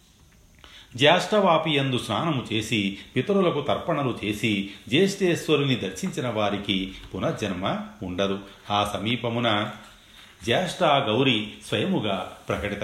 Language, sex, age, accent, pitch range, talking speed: Telugu, male, 40-59, native, 100-135 Hz, 80 wpm